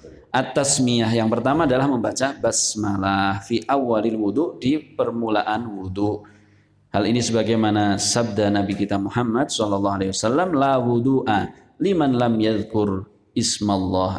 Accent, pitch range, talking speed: native, 95-115 Hz, 105 wpm